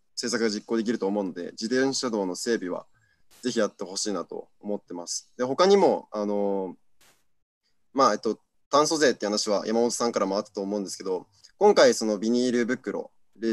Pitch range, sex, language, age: 110-140 Hz, male, Japanese, 20-39